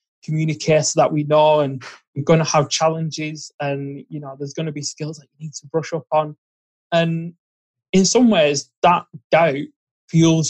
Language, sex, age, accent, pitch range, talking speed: English, male, 20-39, British, 140-165 Hz, 190 wpm